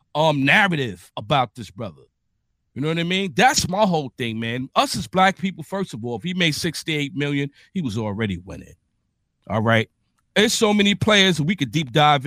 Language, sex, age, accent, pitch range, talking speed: English, male, 50-69, American, 140-190 Hz, 195 wpm